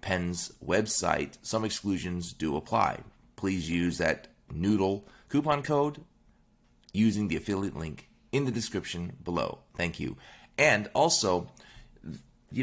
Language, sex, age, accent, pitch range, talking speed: English, male, 30-49, American, 90-115 Hz, 120 wpm